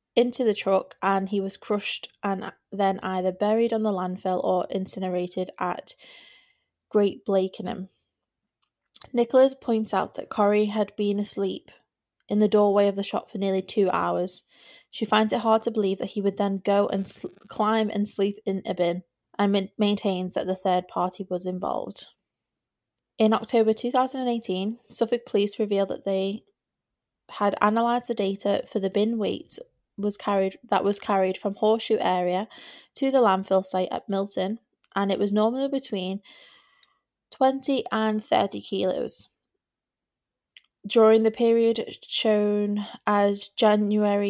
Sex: female